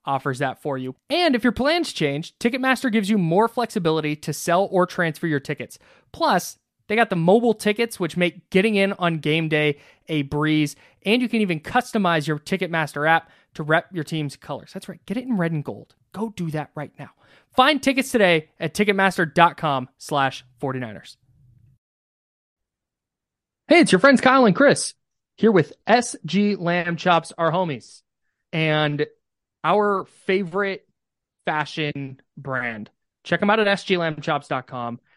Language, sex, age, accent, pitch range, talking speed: English, male, 20-39, American, 145-195 Hz, 155 wpm